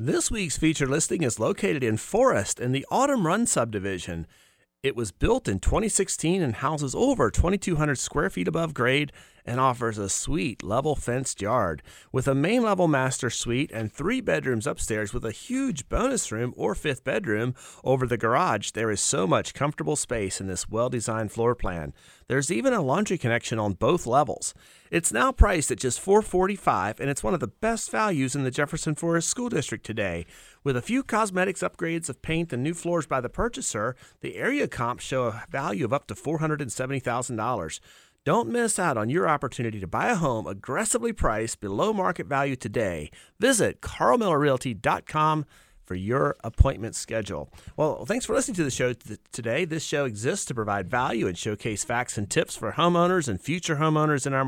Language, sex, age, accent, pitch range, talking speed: English, male, 30-49, American, 115-165 Hz, 180 wpm